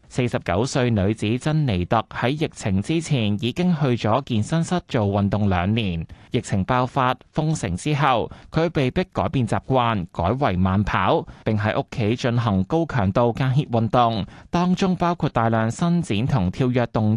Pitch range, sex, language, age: 105-145 Hz, male, Chinese, 20-39